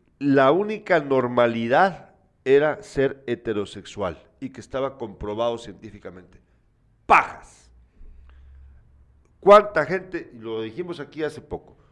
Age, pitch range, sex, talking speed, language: 50-69, 140-205 Hz, male, 95 wpm, Spanish